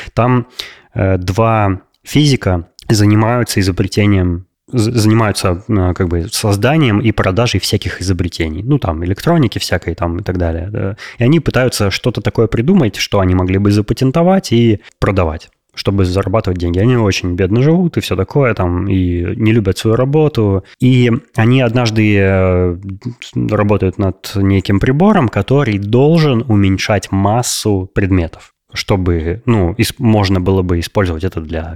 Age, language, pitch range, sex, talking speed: 20-39, Russian, 95-120 Hz, male, 140 wpm